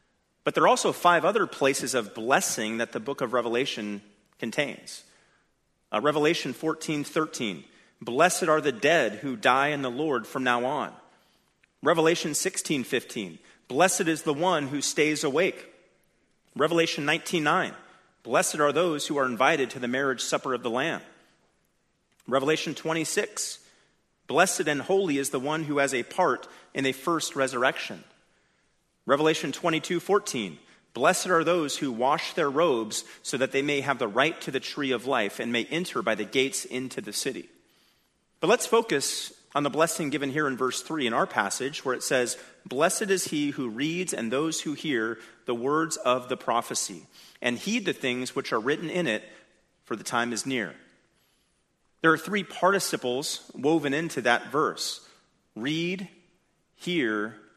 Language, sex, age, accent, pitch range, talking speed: English, male, 40-59, American, 130-170 Hz, 170 wpm